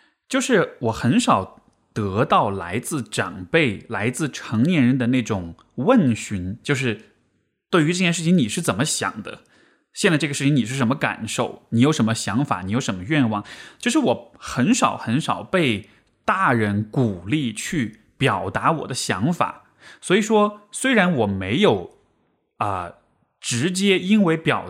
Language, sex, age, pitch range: Chinese, male, 20-39, 115-190 Hz